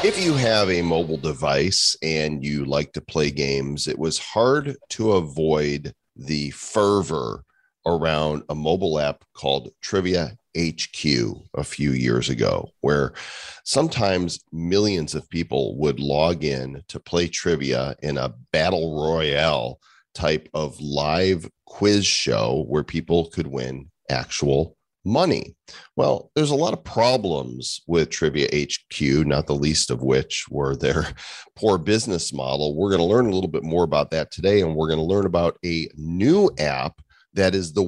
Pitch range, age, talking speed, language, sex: 75-110 Hz, 40-59, 155 wpm, English, male